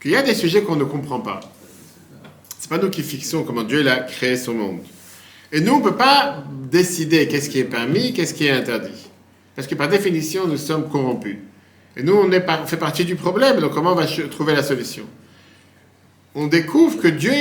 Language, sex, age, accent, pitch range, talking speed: French, male, 50-69, French, 135-195 Hz, 220 wpm